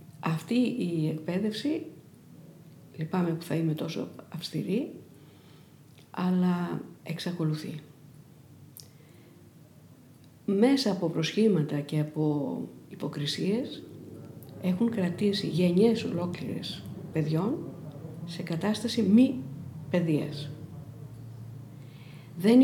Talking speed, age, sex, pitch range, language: 70 wpm, 50-69, female, 155-195 Hz, Greek